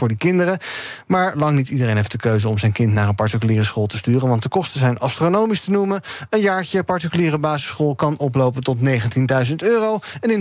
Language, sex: Dutch, male